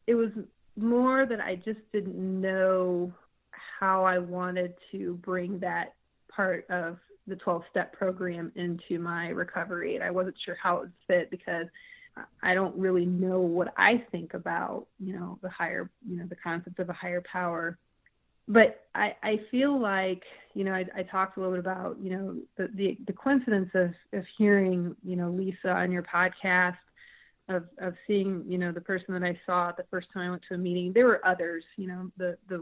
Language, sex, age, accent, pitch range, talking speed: English, female, 30-49, American, 175-195 Hz, 195 wpm